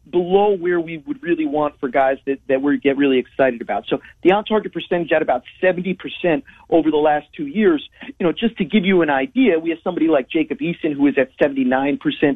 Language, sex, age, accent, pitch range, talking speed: English, male, 40-59, American, 140-185 Hz, 220 wpm